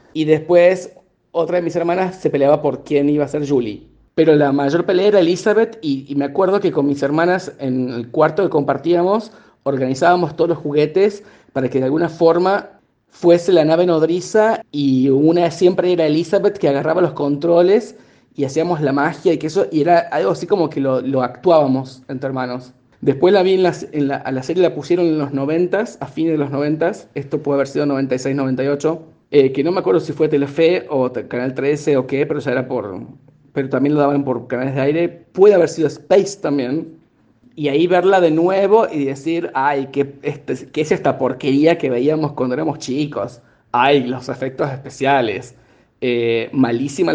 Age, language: 30-49, Spanish